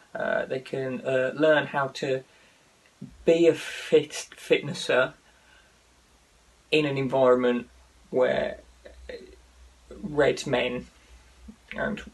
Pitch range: 125-150 Hz